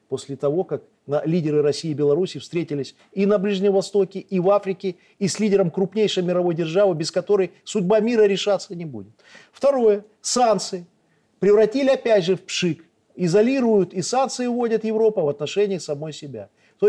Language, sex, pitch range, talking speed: Russian, male, 150-215 Hz, 160 wpm